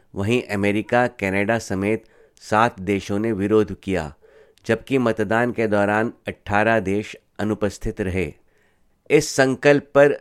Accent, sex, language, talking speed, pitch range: native, male, Hindi, 120 wpm, 105-120 Hz